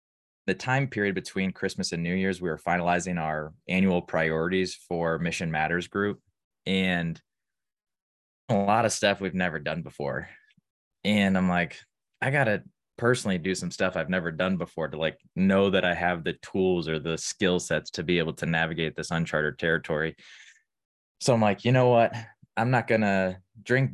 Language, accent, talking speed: English, American, 180 wpm